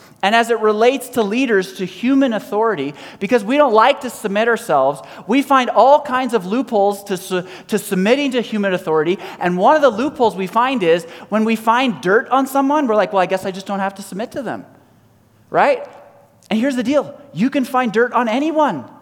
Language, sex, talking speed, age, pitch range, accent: English, male, 210 wpm, 30-49, 195-255 Hz, American